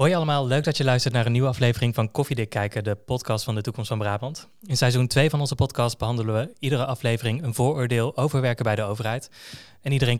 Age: 20-39